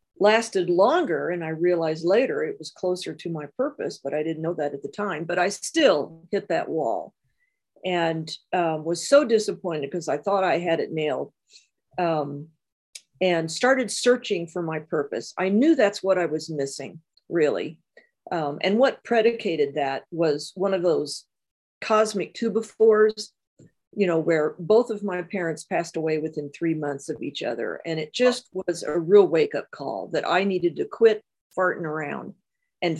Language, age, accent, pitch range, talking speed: English, 50-69, American, 160-215 Hz, 175 wpm